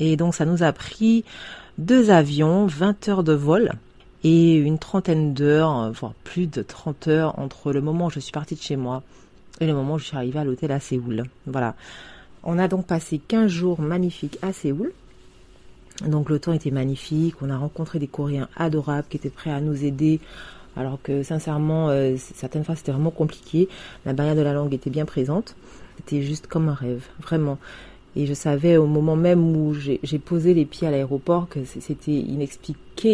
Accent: French